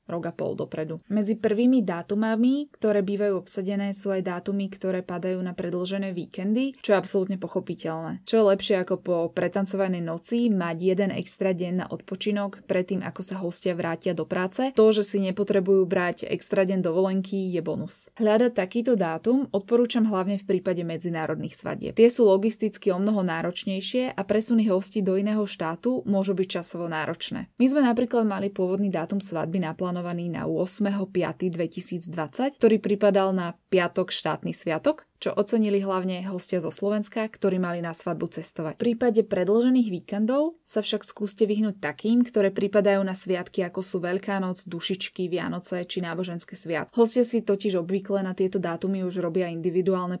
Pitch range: 180-210 Hz